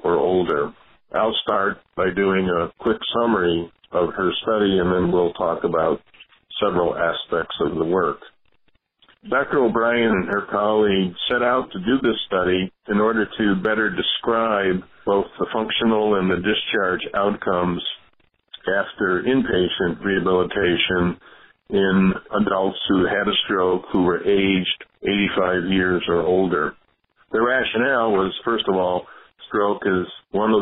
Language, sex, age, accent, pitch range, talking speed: English, male, 50-69, American, 90-105 Hz, 140 wpm